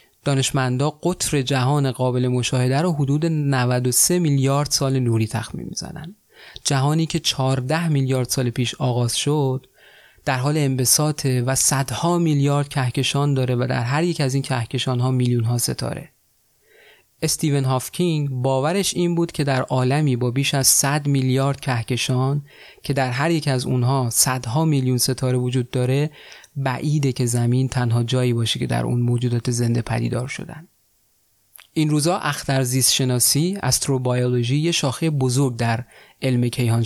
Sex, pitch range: male, 125-145 Hz